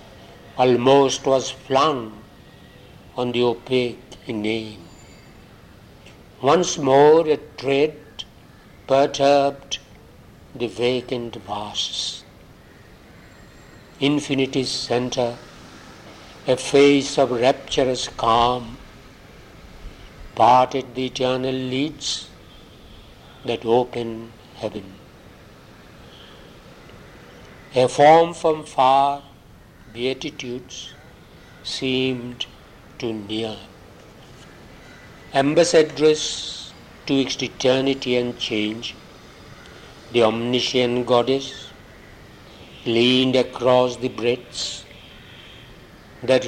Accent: Indian